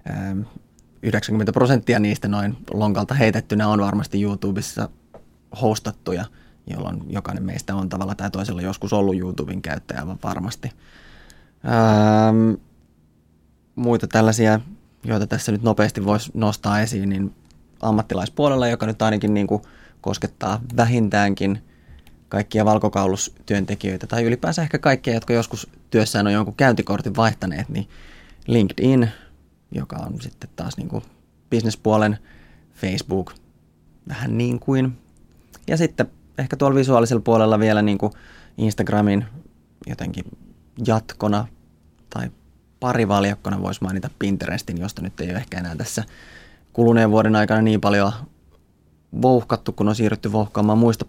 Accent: native